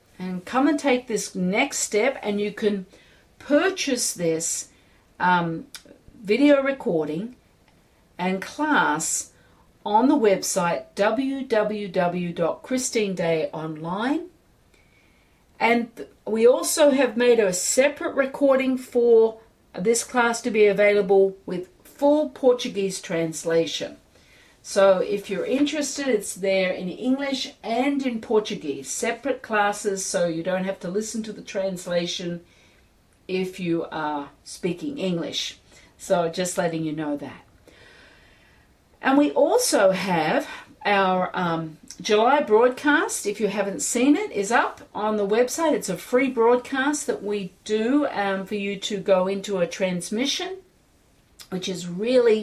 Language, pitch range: English, 180-255 Hz